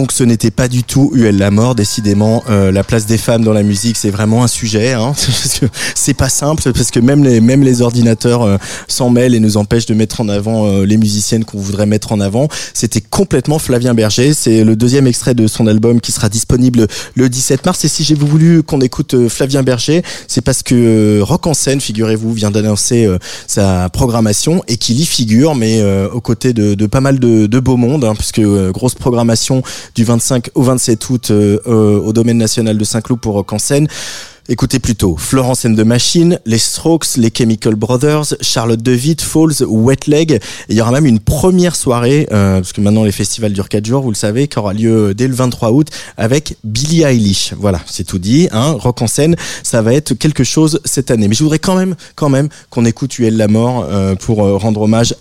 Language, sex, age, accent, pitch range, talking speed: French, male, 20-39, French, 105-130 Hz, 220 wpm